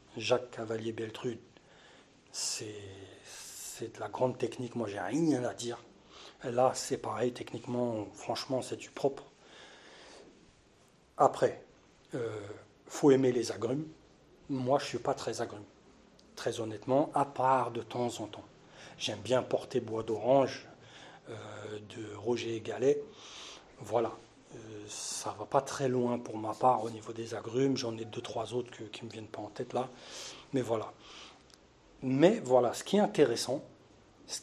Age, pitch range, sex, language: 40-59, 115-135 Hz, male, French